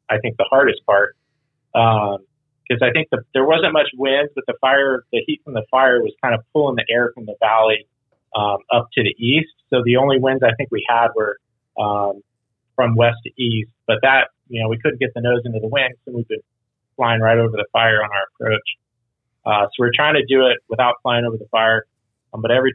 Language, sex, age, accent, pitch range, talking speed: English, male, 30-49, American, 115-130 Hz, 230 wpm